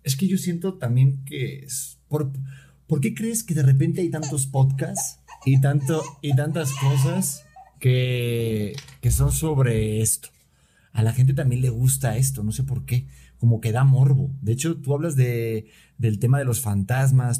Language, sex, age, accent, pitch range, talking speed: Spanish, male, 30-49, Mexican, 115-140 Hz, 175 wpm